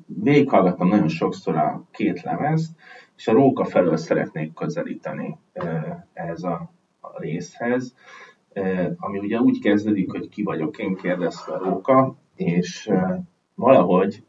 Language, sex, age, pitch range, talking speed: Hungarian, male, 30-49, 85-125 Hz, 120 wpm